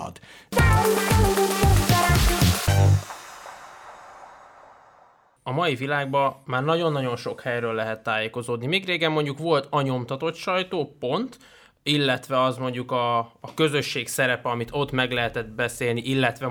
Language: Hungarian